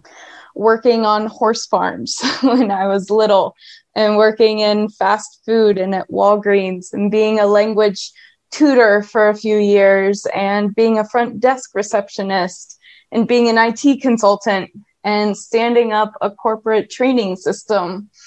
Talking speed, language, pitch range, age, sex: 140 wpm, English, 210-250 Hz, 20-39, female